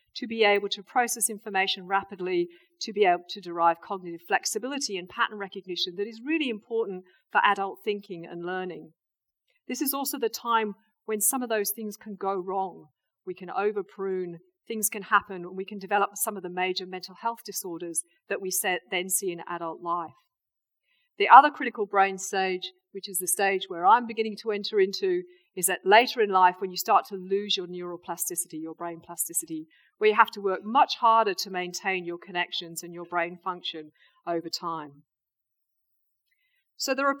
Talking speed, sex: 185 wpm, female